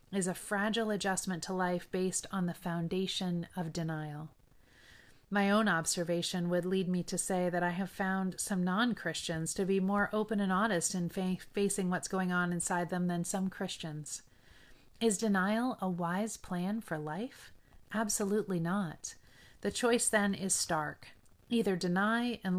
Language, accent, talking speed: English, American, 155 wpm